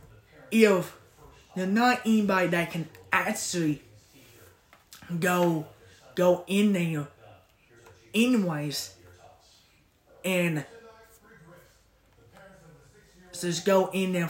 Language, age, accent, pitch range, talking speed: English, 20-39, American, 155-195 Hz, 70 wpm